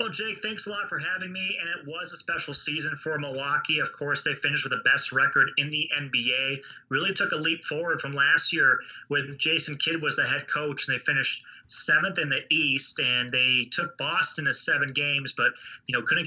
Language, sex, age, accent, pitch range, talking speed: English, male, 30-49, American, 125-155 Hz, 220 wpm